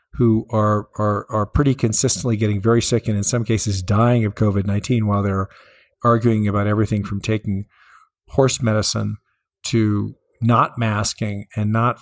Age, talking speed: 50-69, 150 wpm